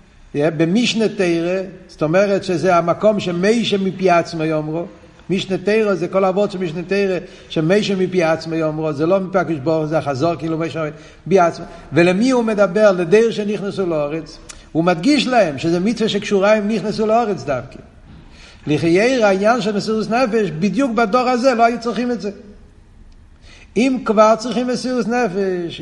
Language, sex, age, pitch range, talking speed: Hebrew, male, 60-79, 160-215 Hz, 150 wpm